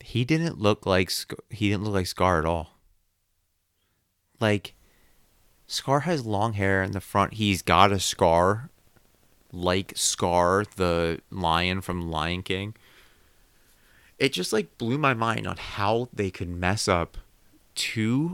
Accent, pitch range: American, 90-120 Hz